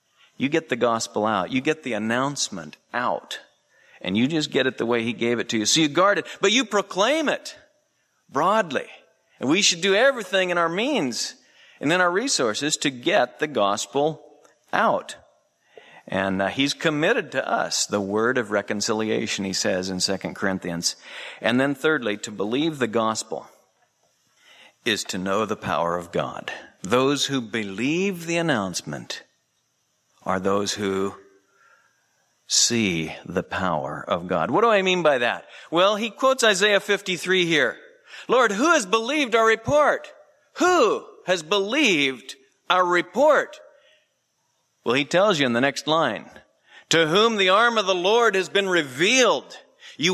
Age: 50-69